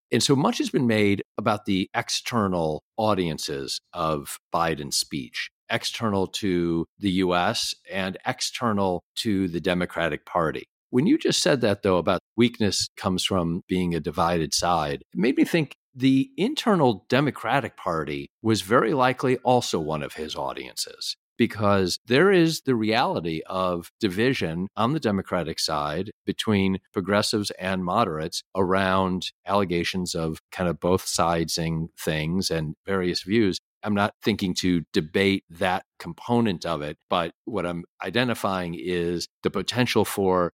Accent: American